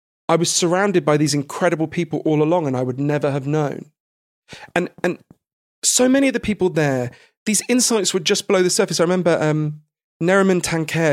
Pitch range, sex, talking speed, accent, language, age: 140-185 Hz, male, 190 wpm, British, English, 40-59